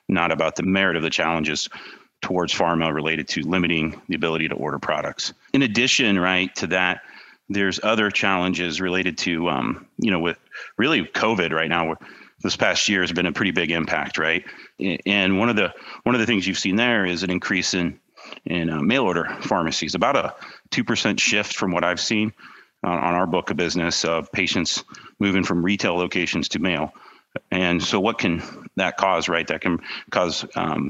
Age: 40-59